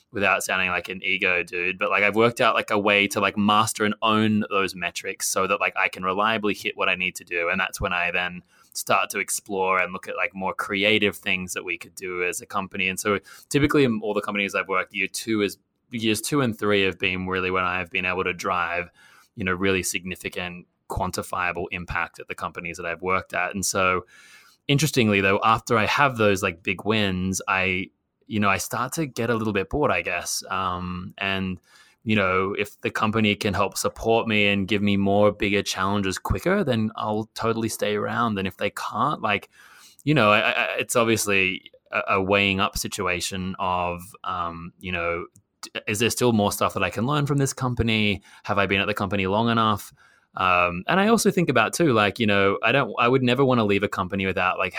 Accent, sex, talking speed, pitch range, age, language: Australian, male, 220 wpm, 95-110 Hz, 20-39, English